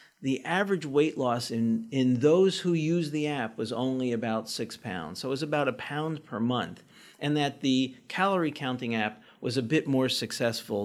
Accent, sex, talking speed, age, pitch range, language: American, male, 195 wpm, 50-69, 115-155 Hz, English